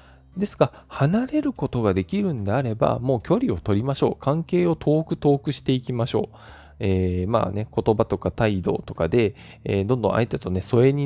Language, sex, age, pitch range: Japanese, male, 20-39, 95-150 Hz